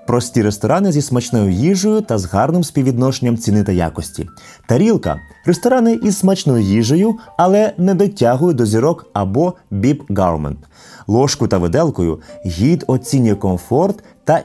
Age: 20-39